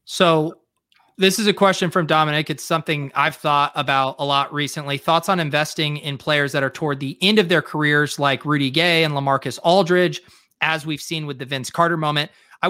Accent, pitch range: American, 140-170 Hz